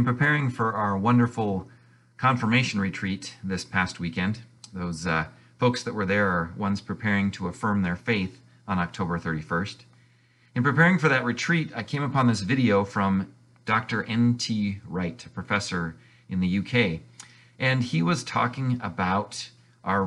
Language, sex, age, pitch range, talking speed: English, male, 40-59, 100-125 Hz, 150 wpm